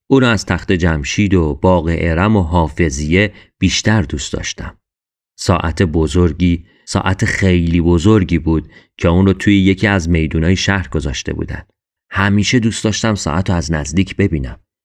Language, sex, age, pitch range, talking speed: Persian, male, 40-59, 85-110 Hz, 135 wpm